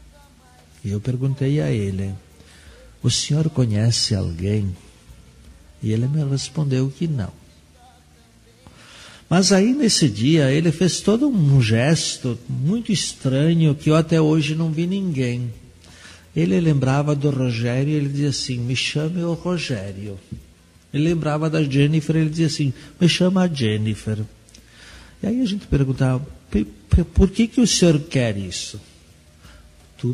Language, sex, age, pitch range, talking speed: Portuguese, male, 60-79, 105-150 Hz, 135 wpm